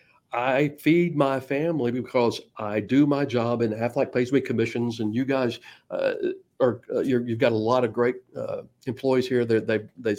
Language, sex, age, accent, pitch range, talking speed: English, male, 50-69, American, 120-155 Hz, 185 wpm